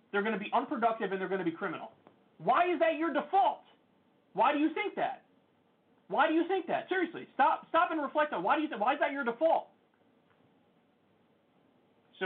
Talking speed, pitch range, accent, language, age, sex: 205 wpm, 175-265 Hz, American, English, 30-49, male